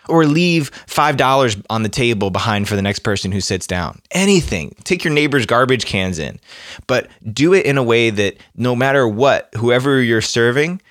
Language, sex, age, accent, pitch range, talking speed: English, male, 20-39, American, 100-125 Hz, 185 wpm